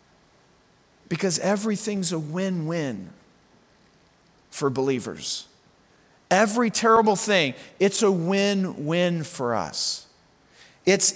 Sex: male